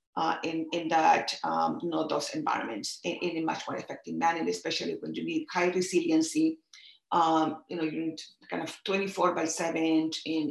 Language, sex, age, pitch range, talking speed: English, female, 40-59, 165-190 Hz, 190 wpm